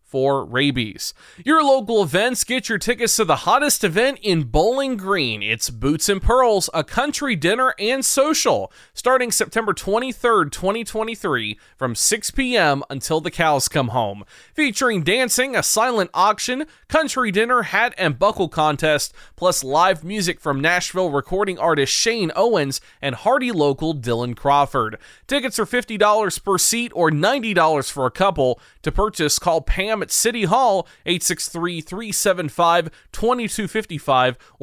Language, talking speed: English, 135 wpm